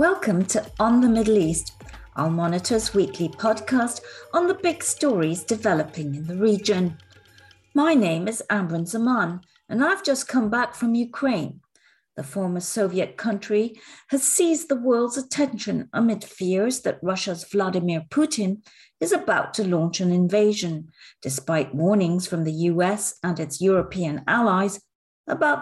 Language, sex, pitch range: English, female, 165-230 Hz